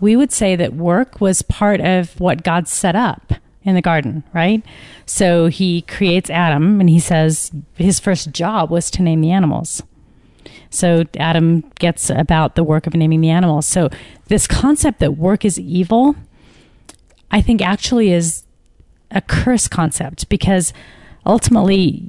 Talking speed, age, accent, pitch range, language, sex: 155 wpm, 40-59, American, 160-195 Hz, English, female